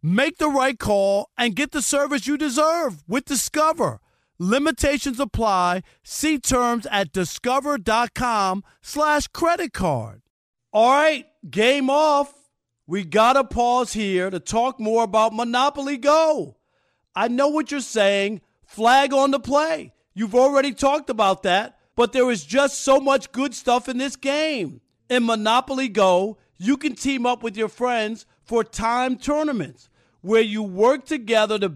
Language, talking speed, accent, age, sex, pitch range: English, 150 wpm, American, 40-59, male, 215-280 Hz